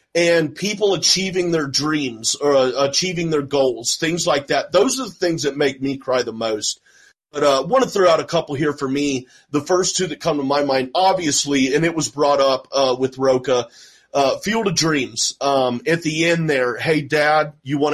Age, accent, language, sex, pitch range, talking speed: 30-49, American, English, male, 135-165 Hz, 215 wpm